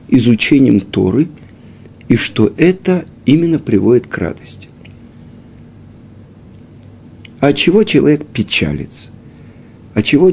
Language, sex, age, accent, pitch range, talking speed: Russian, male, 50-69, native, 110-165 Hz, 80 wpm